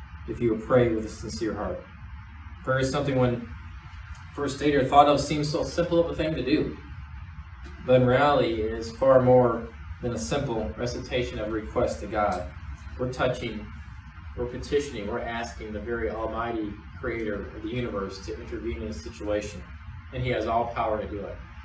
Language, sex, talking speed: English, male, 185 wpm